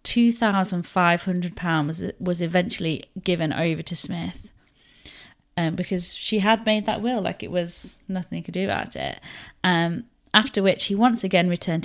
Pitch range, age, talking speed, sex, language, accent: 170-205 Hz, 30-49, 155 wpm, female, English, British